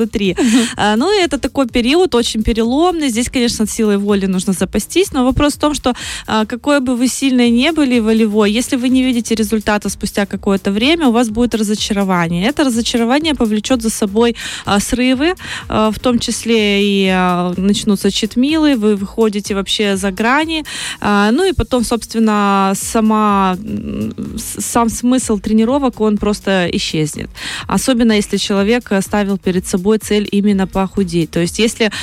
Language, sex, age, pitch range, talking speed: Russian, female, 20-39, 200-240 Hz, 150 wpm